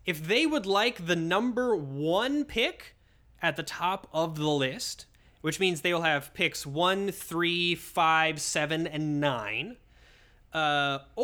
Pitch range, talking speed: 150-210 Hz, 145 wpm